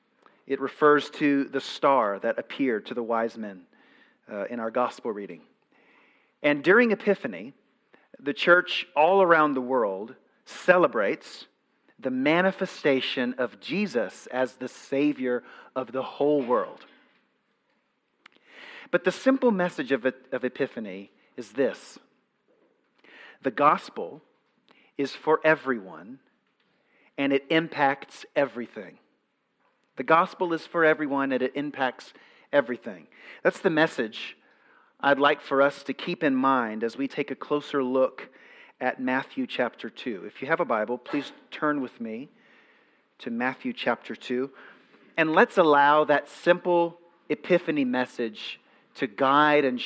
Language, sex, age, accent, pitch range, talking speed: English, male, 40-59, American, 130-170 Hz, 130 wpm